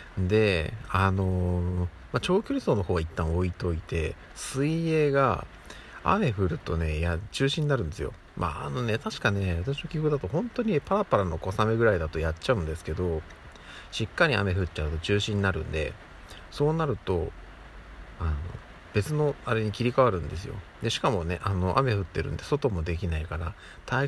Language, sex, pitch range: Japanese, male, 85-105 Hz